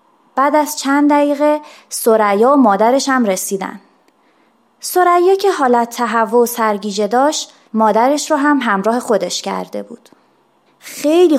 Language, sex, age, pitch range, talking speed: Persian, female, 20-39, 225-300 Hz, 125 wpm